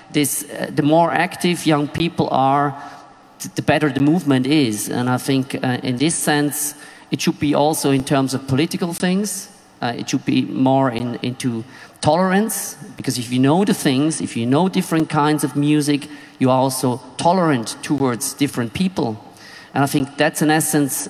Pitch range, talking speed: 135-160 Hz, 180 wpm